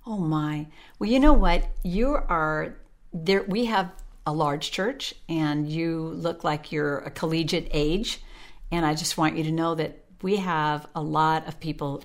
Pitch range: 145-170 Hz